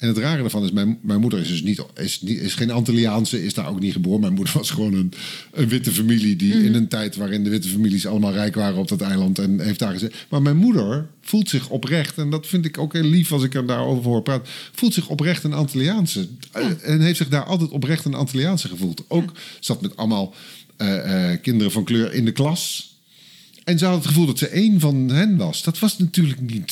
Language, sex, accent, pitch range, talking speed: Dutch, male, Dutch, 120-165 Hz, 235 wpm